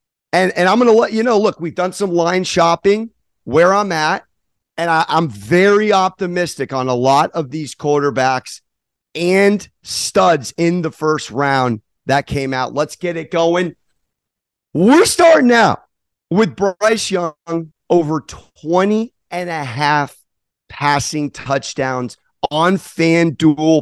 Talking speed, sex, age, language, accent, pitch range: 140 wpm, male, 40-59, English, American, 145-195 Hz